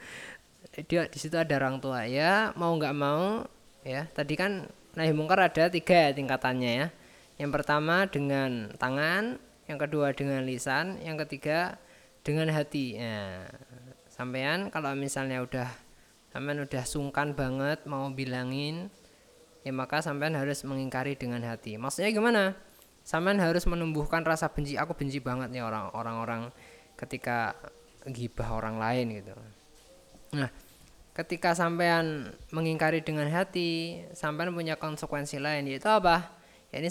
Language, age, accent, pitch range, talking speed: Indonesian, 20-39, native, 125-165 Hz, 130 wpm